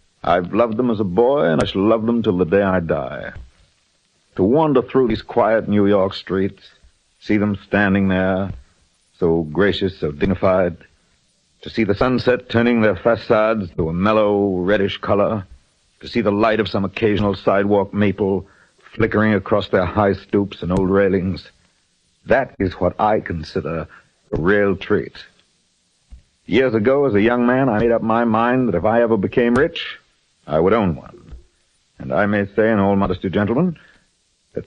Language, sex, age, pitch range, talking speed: English, male, 60-79, 95-115 Hz, 170 wpm